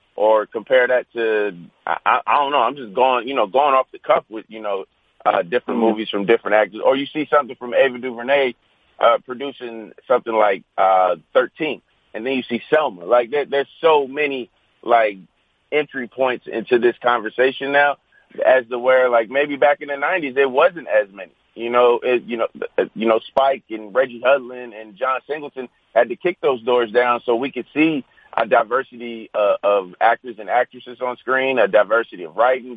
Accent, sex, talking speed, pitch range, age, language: American, male, 190 wpm, 115-145 Hz, 30-49, English